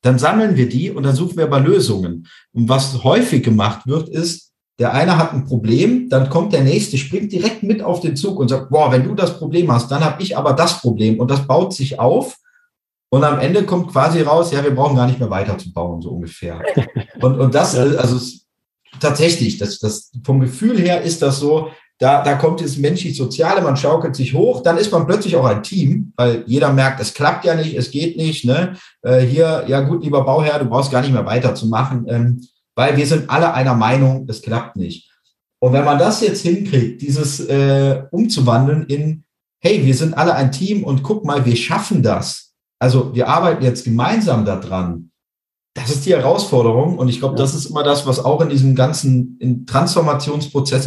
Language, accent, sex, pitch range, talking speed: German, German, male, 125-160 Hz, 205 wpm